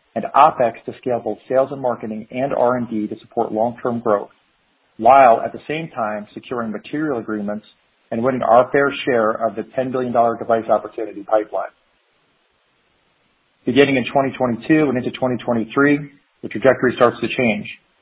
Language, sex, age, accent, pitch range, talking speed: English, male, 40-59, American, 110-130 Hz, 150 wpm